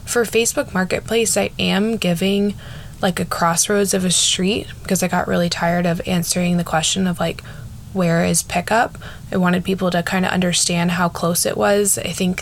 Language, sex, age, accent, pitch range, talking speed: English, female, 20-39, American, 170-205 Hz, 190 wpm